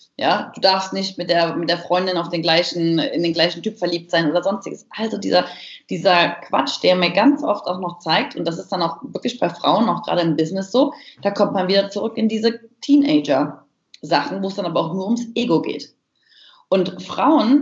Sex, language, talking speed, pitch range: female, German, 215 wpm, 175-235 Hz